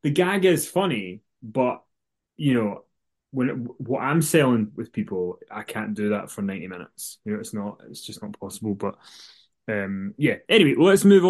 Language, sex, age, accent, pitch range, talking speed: English, male, 20-39, British, 110-140 Hz, 180 wpm